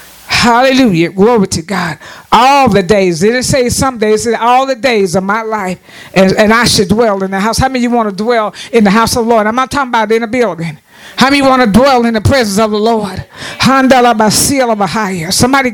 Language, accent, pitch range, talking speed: English, American, 200-245 Hz, 255 wpm